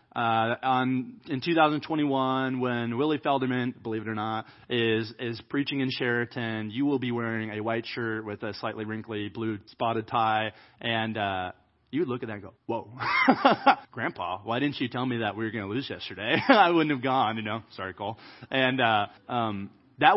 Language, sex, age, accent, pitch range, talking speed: English, male, 30-49, American, 110-140 Hz, 195 wpm